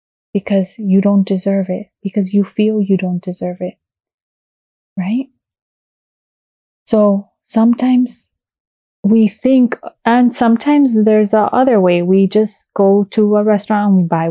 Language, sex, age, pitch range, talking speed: English, female, 20-39, 180-215 Hz, 135 wpm